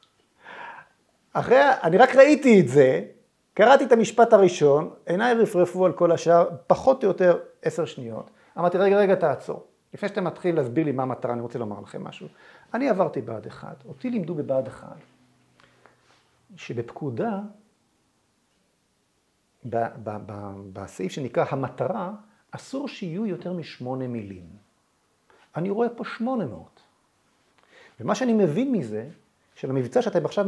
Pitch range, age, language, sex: 135-205 Hz, 50-69, Hebrew, male